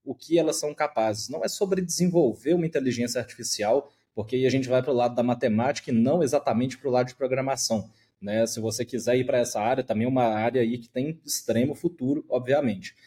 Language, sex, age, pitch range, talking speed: Portuguese, male, 20-39, 120-145 Hz, 220 wpm